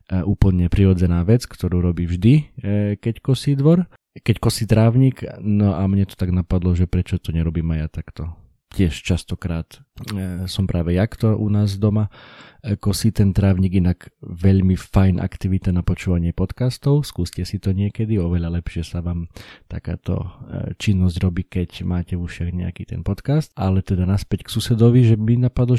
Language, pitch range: Slovak, 90-110 Hz